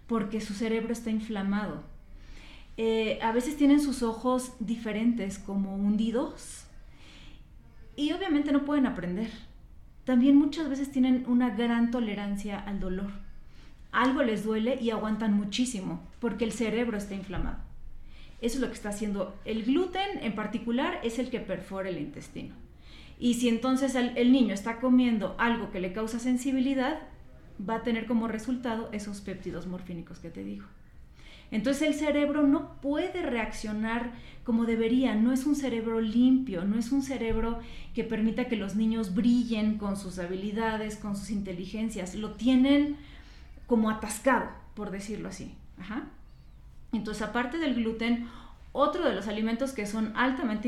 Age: 30-49